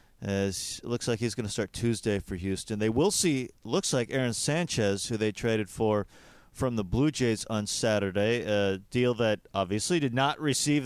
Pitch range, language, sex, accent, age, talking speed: 105-135 Hz, English, male, American, 40-59, 190 wpm